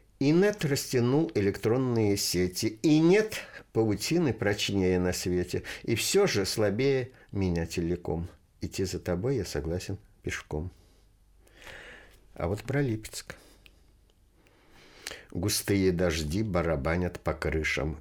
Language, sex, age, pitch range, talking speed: Russian, male, 60-79, 85-110 Hz, 105 wpm